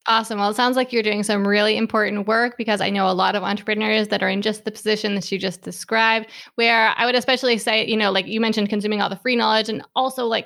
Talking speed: 265 wpm